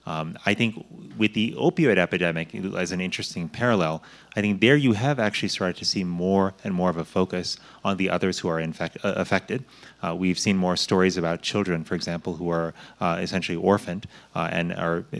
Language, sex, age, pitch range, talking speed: English, male, 30-49, 85-100 Hz, 195 wpm